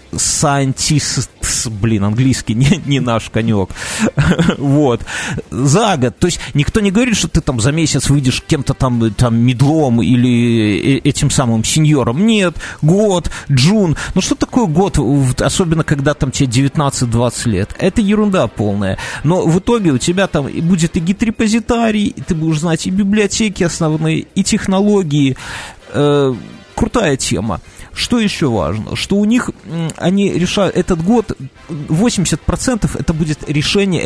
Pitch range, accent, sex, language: 125-180 Hz, native, male, Russian